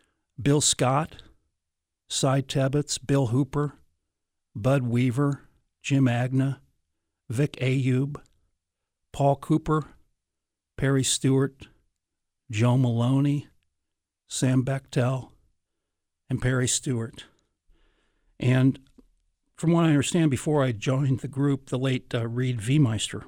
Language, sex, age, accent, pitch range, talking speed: English, male, 60-79, American, 105-135 Hz, 100 wpm